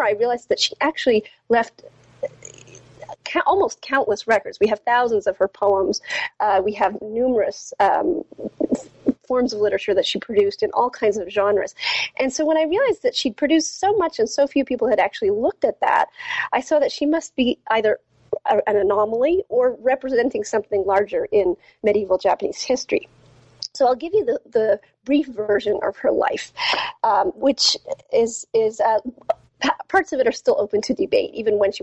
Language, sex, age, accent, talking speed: English, female, 40-59, American, 175 wpm